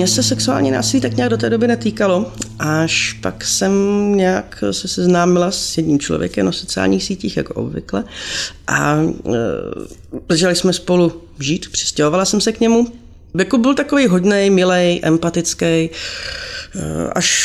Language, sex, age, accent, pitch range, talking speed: Czech, female, 30-49, native, 155-200 Hz, 150 wpm